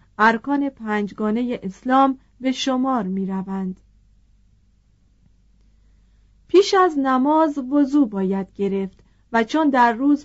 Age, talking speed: 30-49, 95 wpm